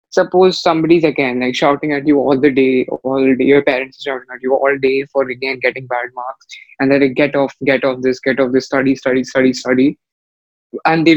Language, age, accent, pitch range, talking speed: English, 20-39, Indian, 130-160 Hz, 230 wpm